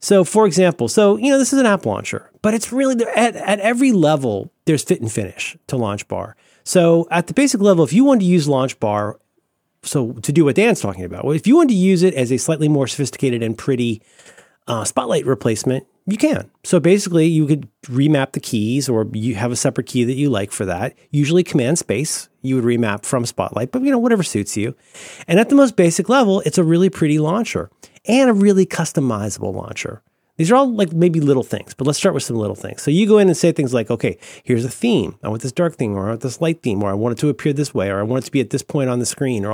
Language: English